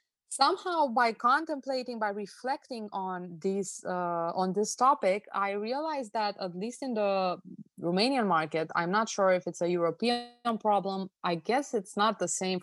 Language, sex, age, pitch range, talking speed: English, female, 20-39, 180-230 Hz, 160 wpm